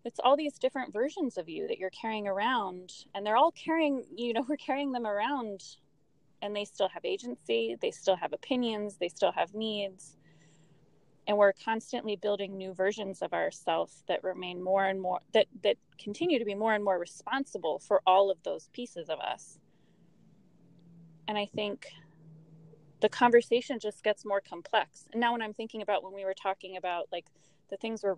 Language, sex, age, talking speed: English, female, 20-39, 185 wpm